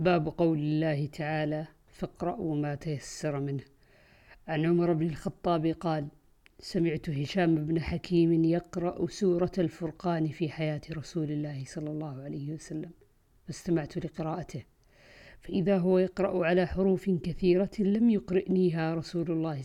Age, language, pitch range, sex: 50-69, Arabic, 155-185 Hz, female